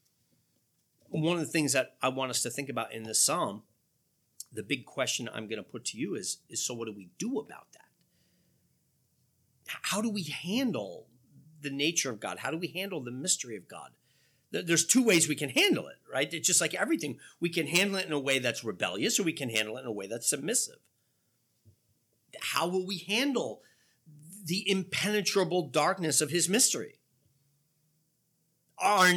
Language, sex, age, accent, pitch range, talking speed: English, male, 40-59, American, 120-175 Hz, 185 wpm